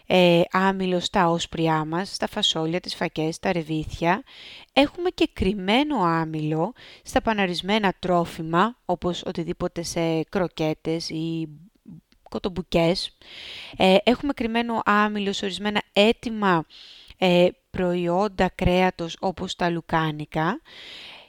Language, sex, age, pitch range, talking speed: Greek, female, 20-39, 170-215 Hz, 95 wpm